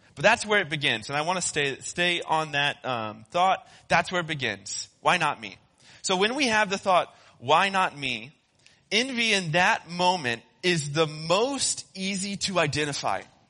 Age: 20-39